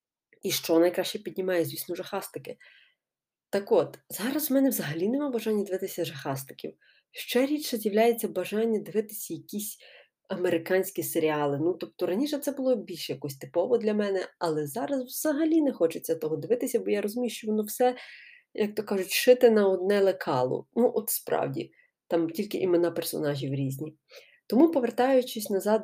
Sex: female